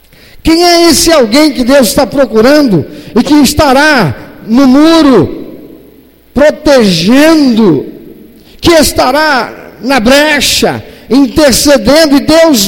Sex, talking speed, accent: male, 100 wpm, Brazilian